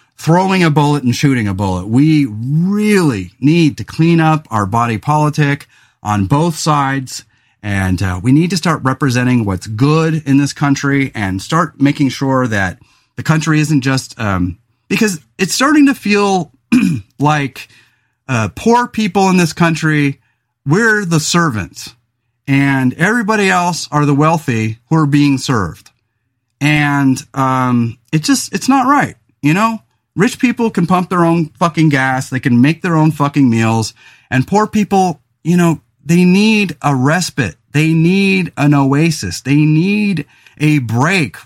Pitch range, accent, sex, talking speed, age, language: 120-165 Hz, American, male, 155 wpm, 30-49, English